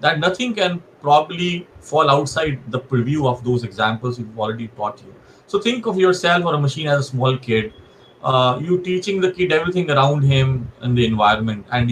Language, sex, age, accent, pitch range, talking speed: English, male, 30-49, Indian, 120-155 Hz, 190 wpm